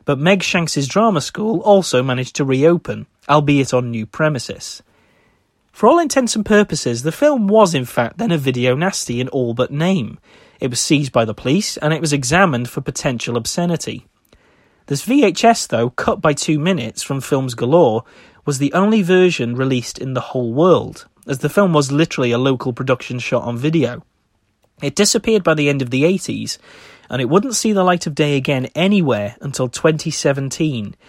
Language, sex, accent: English, male, British